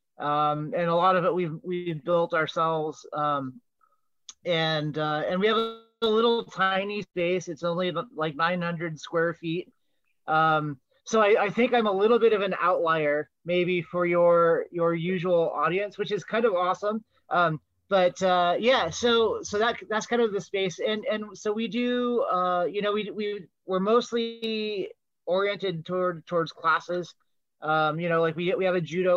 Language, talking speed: English, 180 wpm